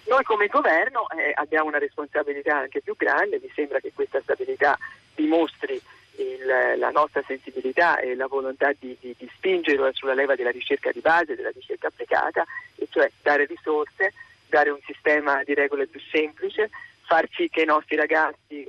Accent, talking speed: native, 165 wpm